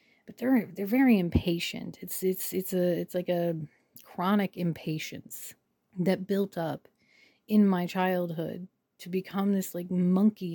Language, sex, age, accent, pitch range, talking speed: English, female, 30-49, American, 170-205 Hz, 140 wpm